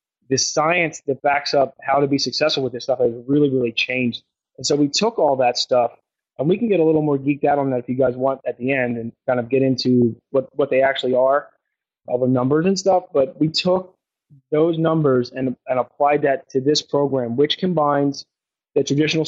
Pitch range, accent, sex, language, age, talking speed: 125-145 Hz, American, male, English, 20-39, 225 wpm